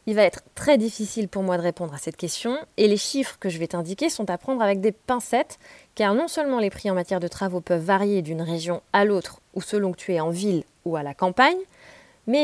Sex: female